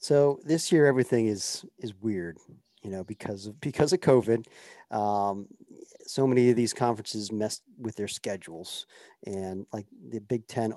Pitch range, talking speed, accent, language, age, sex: 105-125 Hz, 160 wpm, American, English, 40-59, male